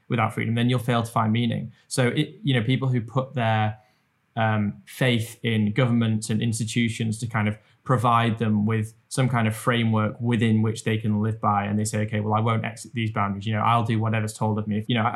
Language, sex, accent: English, male, British